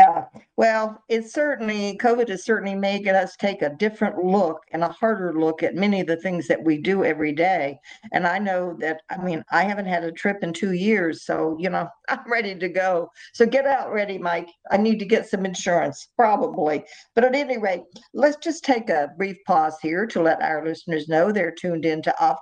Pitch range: 165-215 Hz